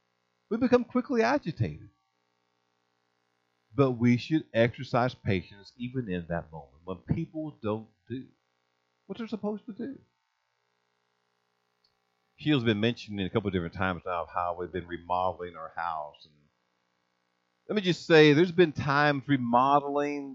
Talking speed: 140 wpm